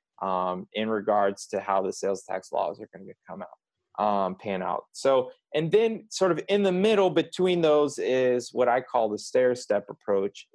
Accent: American